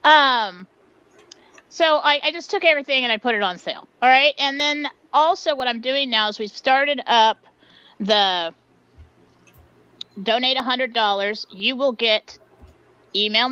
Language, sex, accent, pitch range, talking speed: English, female, American, 205-290 Hz, 155 wpm